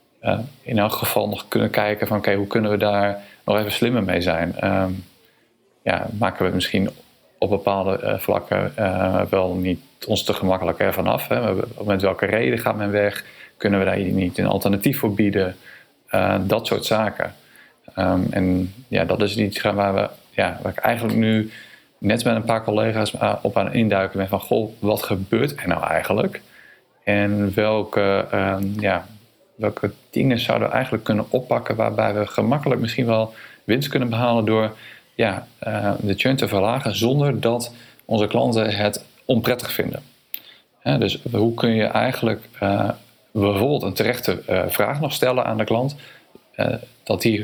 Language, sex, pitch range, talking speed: Dutch, male, 100-115 Hz, 170 wpm